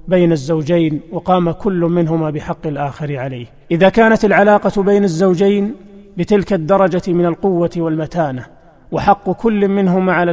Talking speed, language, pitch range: 130 wpm, Arabic, 170-190 Hz